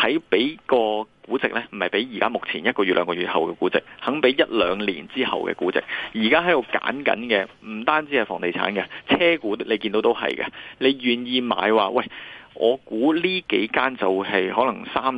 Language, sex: Chinese, male